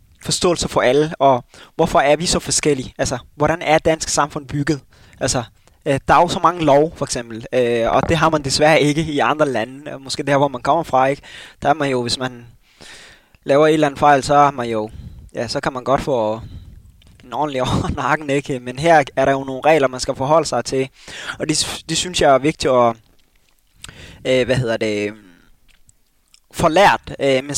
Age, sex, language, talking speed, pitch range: 20-39, male, Danish, 200 wpm, 120-160 Hz